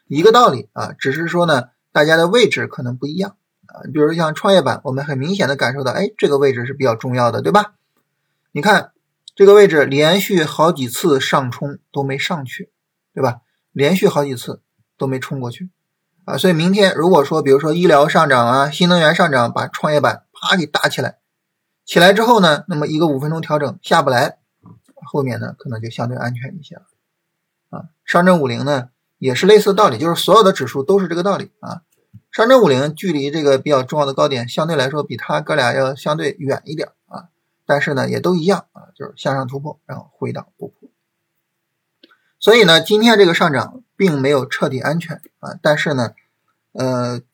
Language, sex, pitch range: Chinese, male, 135-185 Hz